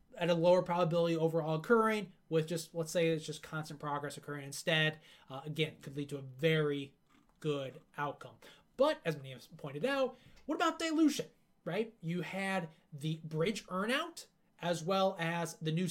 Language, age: English, 20-39